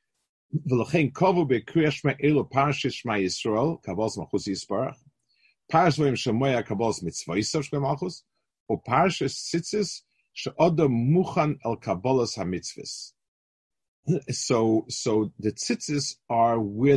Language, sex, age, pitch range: English, male, 50-69, 110-150 Hz